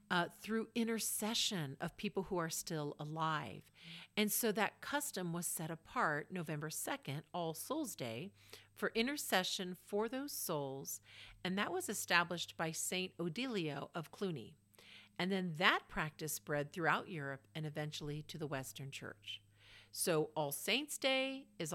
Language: English